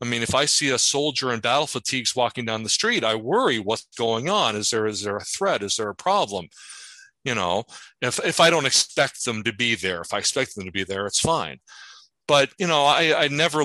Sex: male